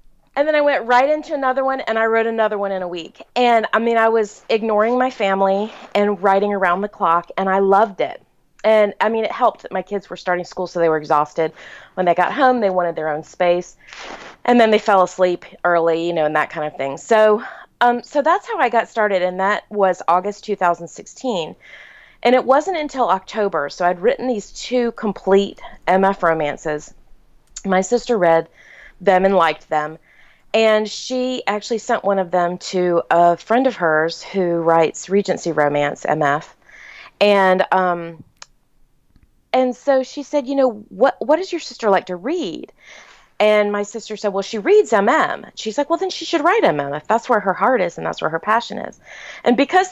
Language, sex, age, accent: English, female, 30-49, American